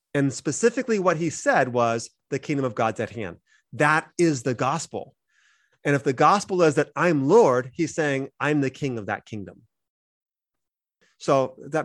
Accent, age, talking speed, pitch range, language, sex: American, 30-49, 170 wpm, 135-180 Hz, English, male